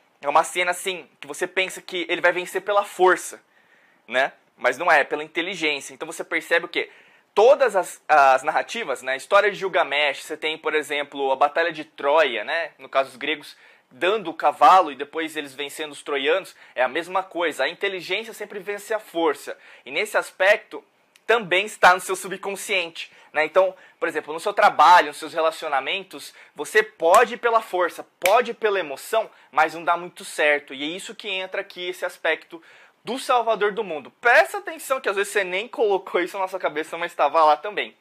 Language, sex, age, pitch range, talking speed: Portuguese, male, 20-39, 155-205 Hz, 195 wpm